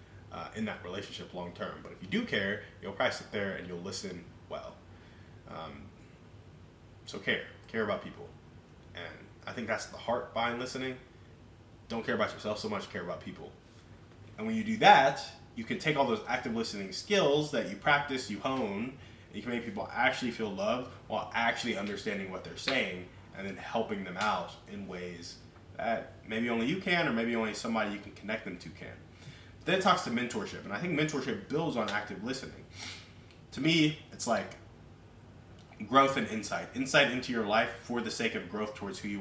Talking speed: 195 wpm